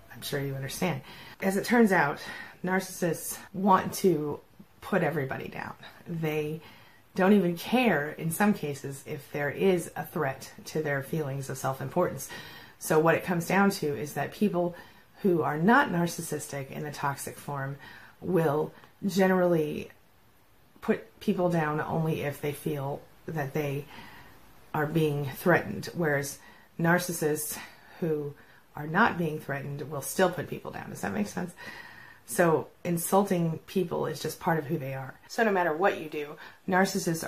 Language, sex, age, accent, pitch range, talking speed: English, female, 30-49, American, 145-175 Hz, 155 wpm